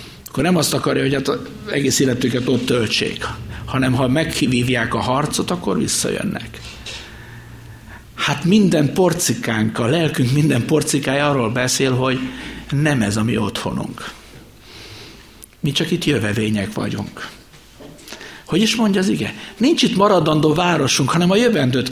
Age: 60-79